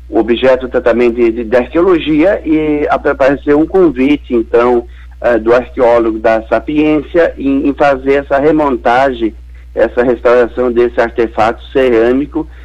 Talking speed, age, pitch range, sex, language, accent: 125 wpm, 60-79, 115-150 Hz, male, Portuguese, Brazilian